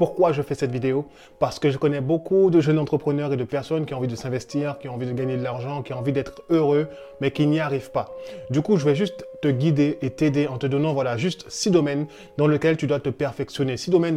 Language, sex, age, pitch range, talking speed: French, male, 20-39, 135-160 Hz, 265 wpm